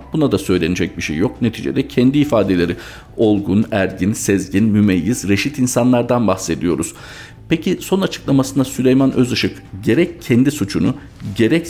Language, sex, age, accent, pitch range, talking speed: Turkish, male, 50-69, native, 100-140 Hz, 130 wpm